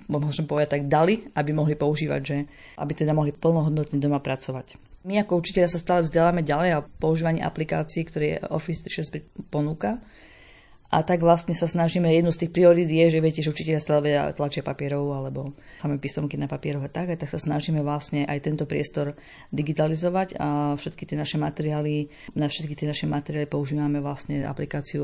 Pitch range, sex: 145-165 Hz, female